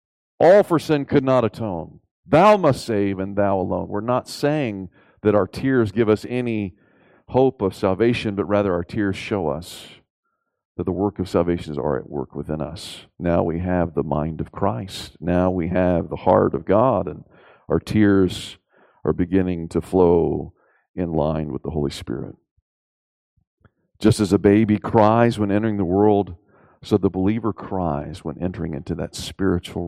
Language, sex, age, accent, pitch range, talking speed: English, male, 50-69, American, 85-105 Hz, 170 wpm